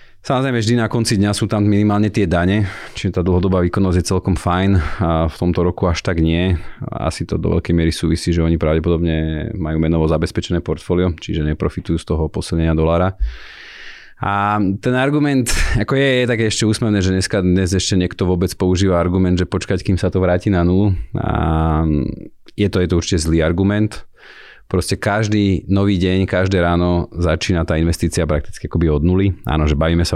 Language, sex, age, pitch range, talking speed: Slovak, male, 30-49, 80-100 Hz, 185 wpm